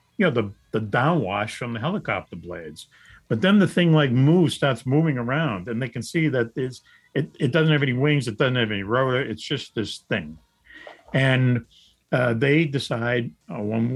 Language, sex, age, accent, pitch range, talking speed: English, male, 60-79, American, 115-150 Hz, 185 wpm